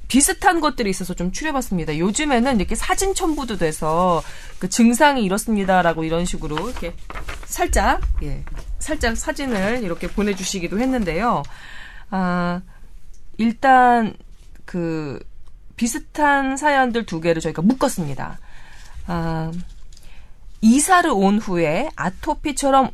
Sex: female